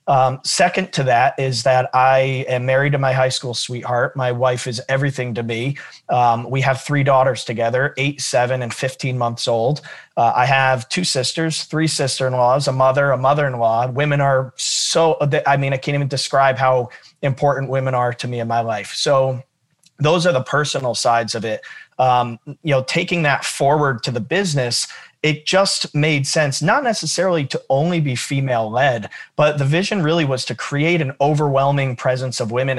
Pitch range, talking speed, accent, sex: 130-145 Hz, 190 wpm, American, male